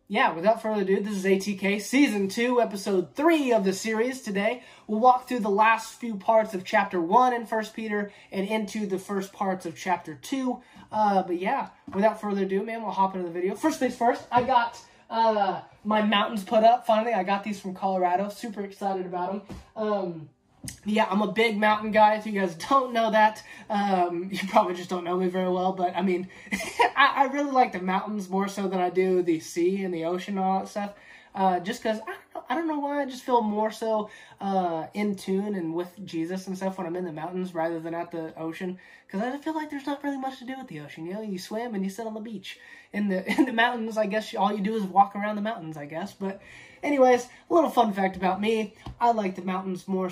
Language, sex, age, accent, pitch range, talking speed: English, male, 20-39, American, 185-225 Hz, 235 wpm